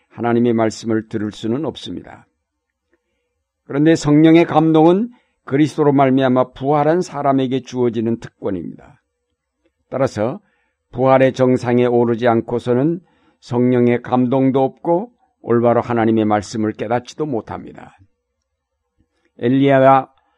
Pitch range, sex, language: 115-140 Hz, male, Korean